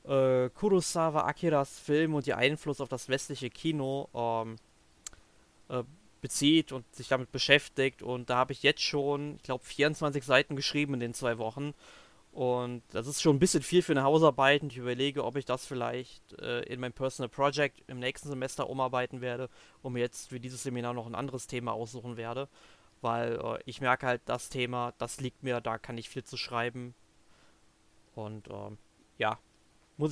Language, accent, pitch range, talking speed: German, German, 125-150 Hz, 180 wpm